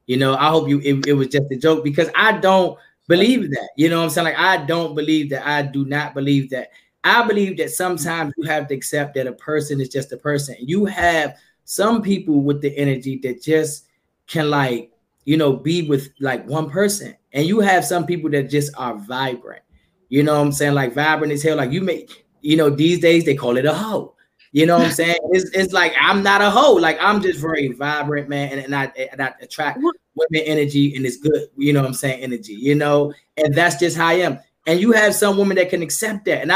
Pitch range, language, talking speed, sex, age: 140-185 Hz, English, 240 wpm, male, 20-39